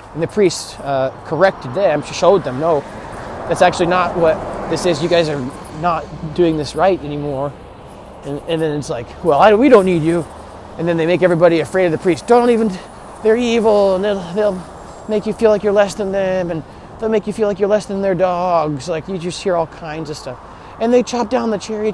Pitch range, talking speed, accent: 145-200 Hz, 225 wpm, American